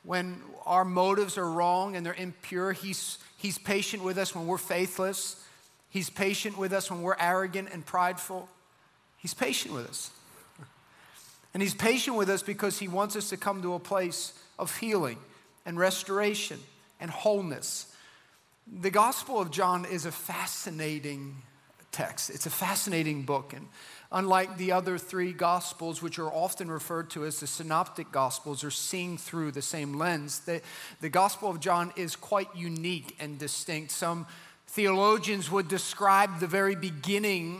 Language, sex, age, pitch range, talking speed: English, male, 40-59, 165-195 Hz, 160 wpm